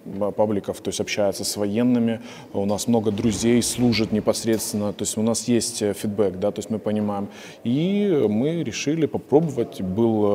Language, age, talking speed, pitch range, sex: Ukrainian, 20-39, 160 wpm, 95-110 Hz, male